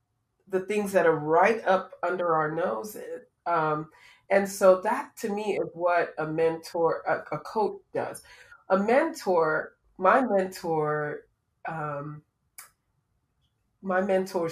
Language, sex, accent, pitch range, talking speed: English, female, American, 165-195 Hz, 125 wpm